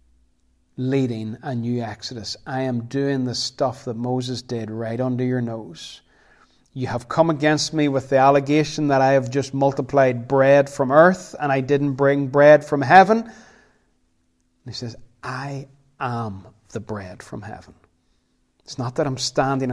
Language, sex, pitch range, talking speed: English, male, 115-140 Hz, 160 wpm